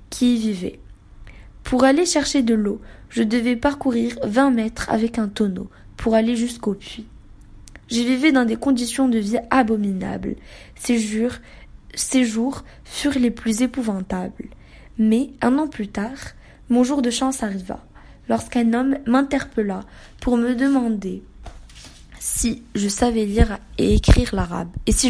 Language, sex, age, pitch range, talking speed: French, female, 20-39, 210-255 Hz, 145 wpm